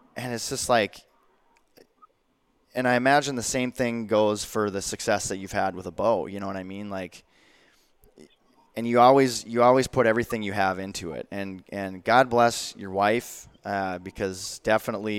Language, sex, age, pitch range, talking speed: English, male, 20-39, 95-120 Hz, 180 wpm